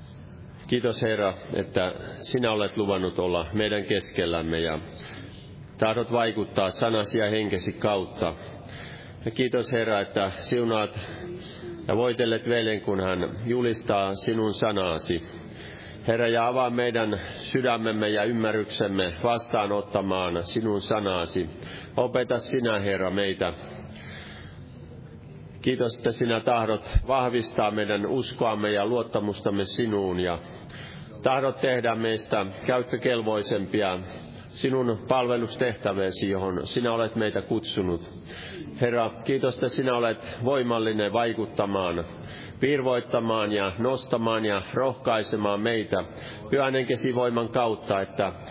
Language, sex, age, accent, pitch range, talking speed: Finnish, male, 40-59, native, 100-120 Hz, 100 wpm